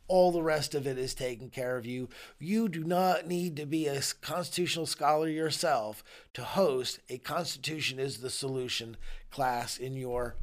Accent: American